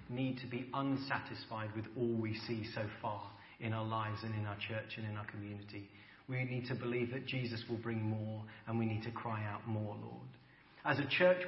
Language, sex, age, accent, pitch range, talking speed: English, male, 40-59, British, 120-160 Hz, 215 wpm